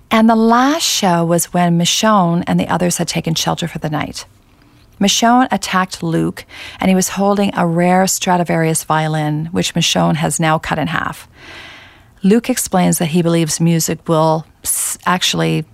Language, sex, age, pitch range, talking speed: English, female, 40-59, 150-200 Hz, 160 wpm